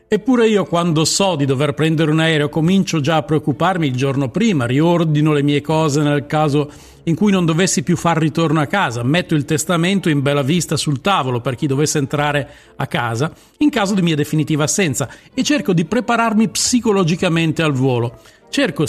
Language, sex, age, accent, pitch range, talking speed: Italian, male, 50-69, native, 150-195 Hz, 185 wpm